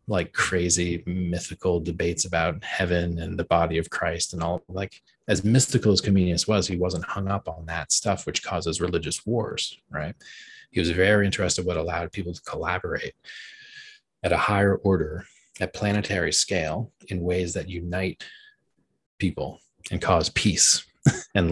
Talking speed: 160 wpm